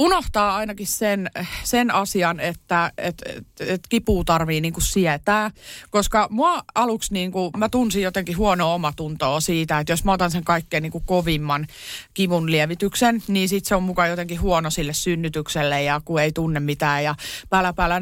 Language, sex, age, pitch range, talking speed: Finnish, female, 30-49, 170-220 Hz, 165 wpm